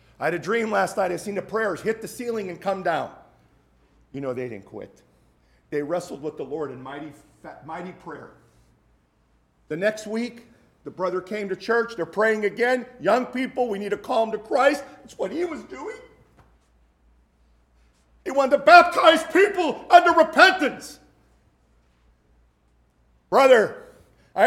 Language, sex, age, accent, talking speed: English, male, 50-69, American, 155 wpm